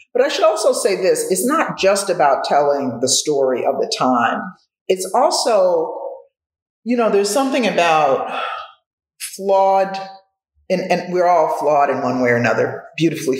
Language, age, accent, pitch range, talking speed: English, 50-69, American, 160-225 Hz, 155 wpm